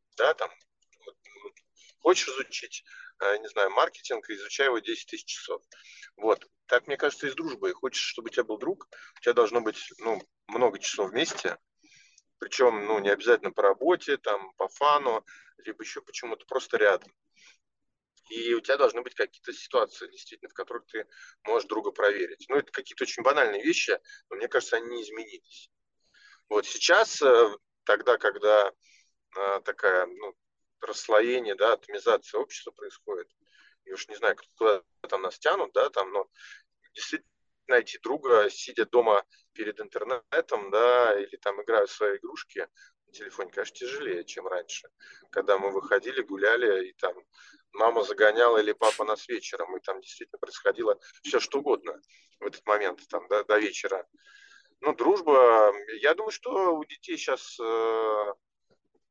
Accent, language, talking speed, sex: native, Russian, 150 wpm, male